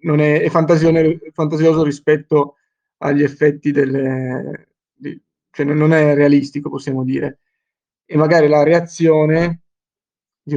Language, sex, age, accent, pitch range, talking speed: Italian, male, 20-39, native, 140-155 Hz, 120 wpm